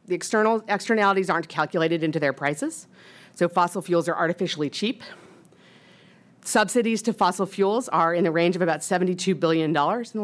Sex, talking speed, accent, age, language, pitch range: female, 165 wpm, American, 40-59, English, 165-215 Hz